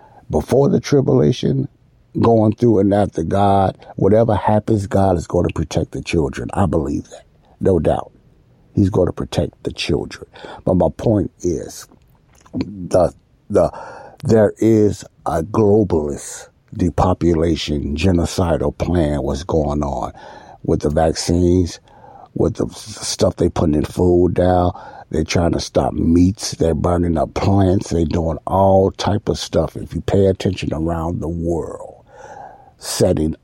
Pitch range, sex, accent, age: 80-100 Hz, male, American, 60-79